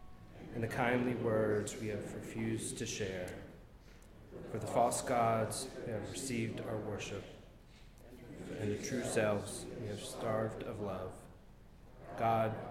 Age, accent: 30-49, American